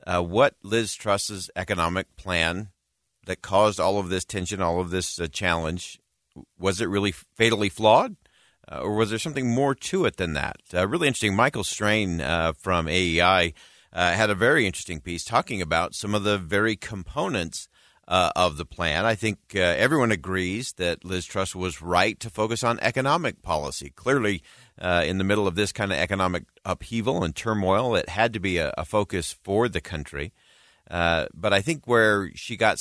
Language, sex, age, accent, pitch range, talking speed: English, male, 50-69, American, 85-105 Hz, 185 wpm